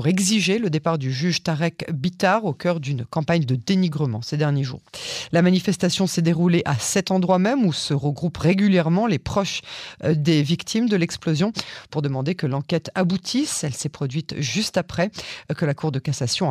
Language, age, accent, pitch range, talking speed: French, 40-59, French, 145-190 Hz, 180 wpm